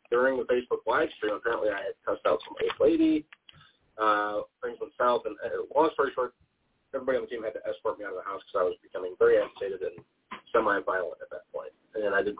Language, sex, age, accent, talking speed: English, male, 30-49, American, 230 wpm